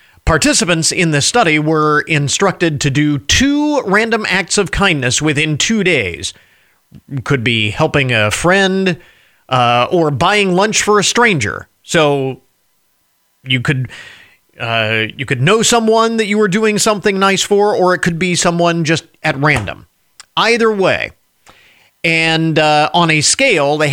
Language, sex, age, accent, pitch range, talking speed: English, male, 40-59, American, 140-195 Hz, 150 wpm